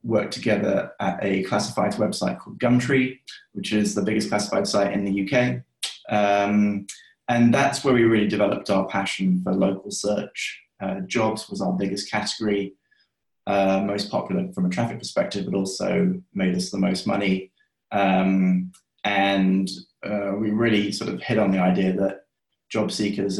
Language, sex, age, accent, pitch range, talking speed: English, male, 20-39, British, 95-120 Hz, 160 wpm